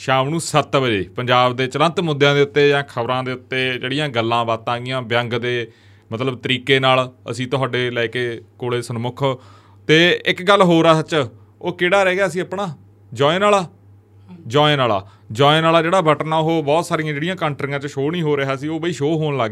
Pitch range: 120-155 Hz